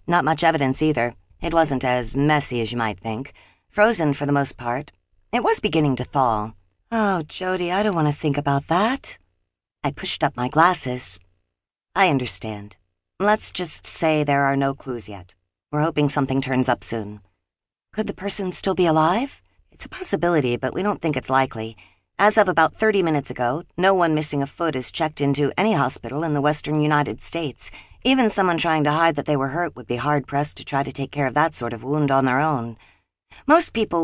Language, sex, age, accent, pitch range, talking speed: English, female, 50-69, American, 125-170 Hz, 205 wpm